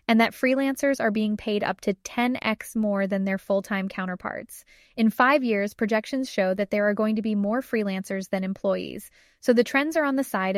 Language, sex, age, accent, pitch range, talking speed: English, female, 20-39, American, 195-230 Hz, 205 wpm